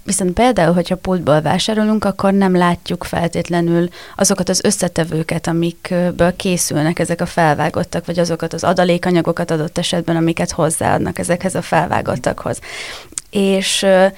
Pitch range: 170-190 Hz